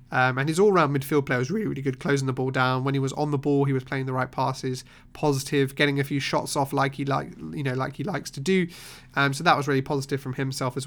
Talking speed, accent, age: 280 wpm, British, 30-49